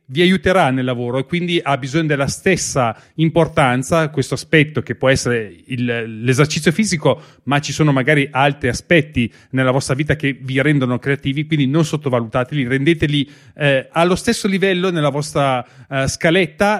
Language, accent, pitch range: Italian, native, 130-165 Hz